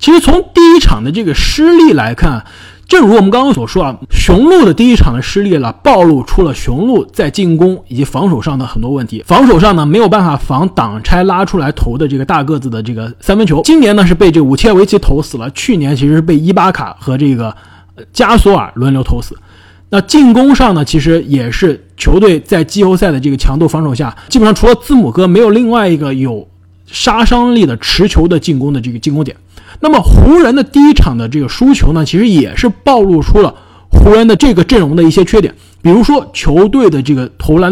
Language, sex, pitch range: Chinese, male, 140-220 Hz